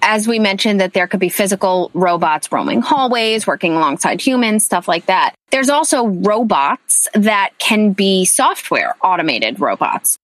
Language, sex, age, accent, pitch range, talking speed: English, female, 20-39, American, 180-250 Hz, 150 wpm